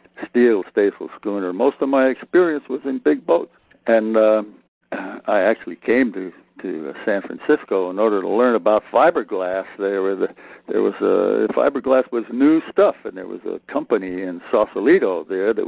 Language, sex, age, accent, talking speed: English, male, 60-79, American, 170 wpm